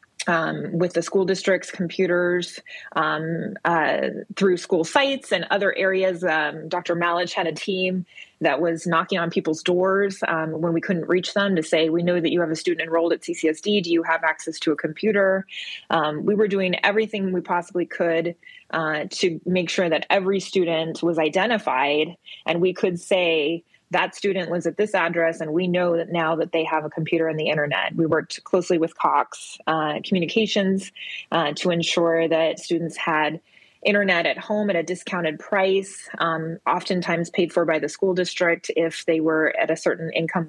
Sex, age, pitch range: female, 20-39, 165-190 Hz